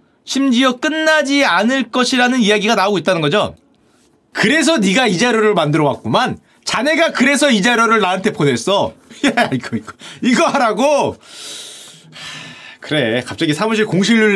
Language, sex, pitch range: Korean, male, 160-240 Hz